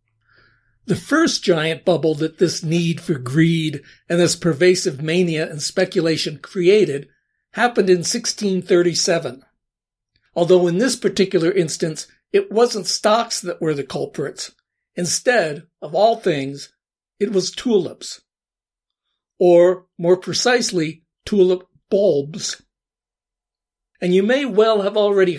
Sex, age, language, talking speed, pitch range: male, 60-79, English, 115 wpm, 165-205 Hz